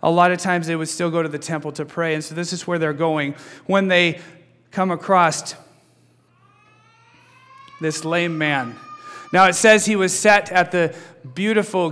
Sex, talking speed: male, 180 wpm